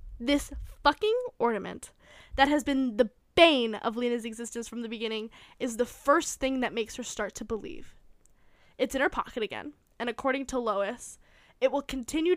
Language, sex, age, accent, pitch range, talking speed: English, female, 10-29, American, 230-275 Hz, 175 wpm